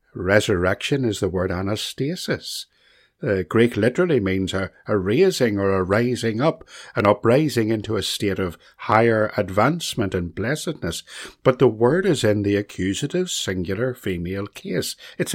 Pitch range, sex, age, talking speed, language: 95-130 Hz, male, 60-79, 145 wpm, English